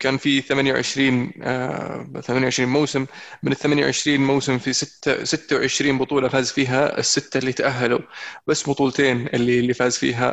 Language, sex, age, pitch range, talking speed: Arabic, male, 20-39, 130-150 Hz, 135 wpm